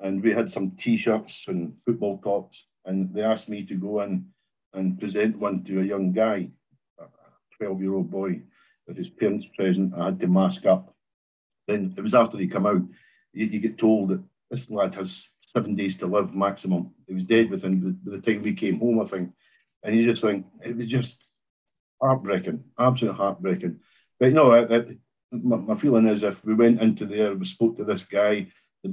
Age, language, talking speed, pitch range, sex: 50-69, English, 190 wpm, 95-115 Hz, male